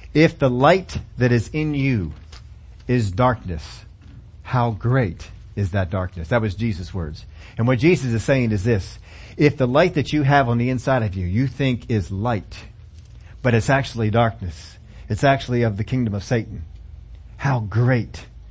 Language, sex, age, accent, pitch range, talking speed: English, male, 40-59, American, 100-140 Hz, 170 wpm